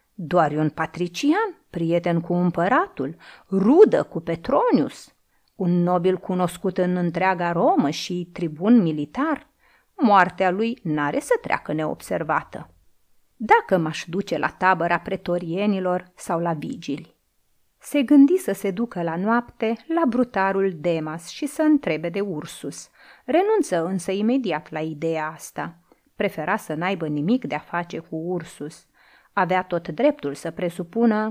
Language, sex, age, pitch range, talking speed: Romanian, female, 30-49, 165-230 Hz, 130 wpm